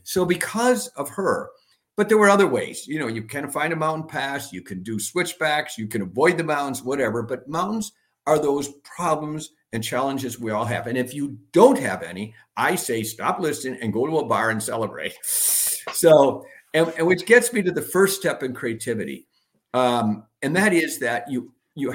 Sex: male